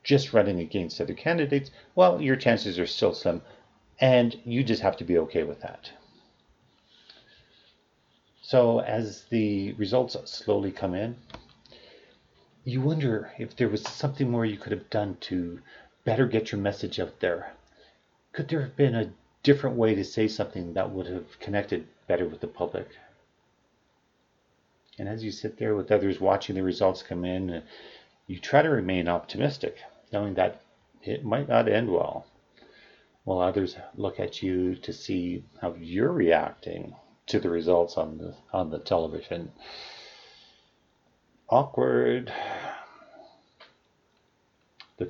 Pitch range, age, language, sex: 90-115 Hz, 40-59, English, male